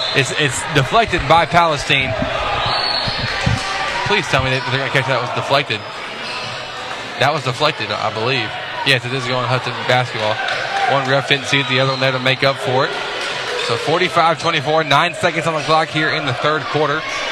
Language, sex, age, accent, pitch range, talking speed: English, male, 20-39, American, 135-170 Hz, 190 wpm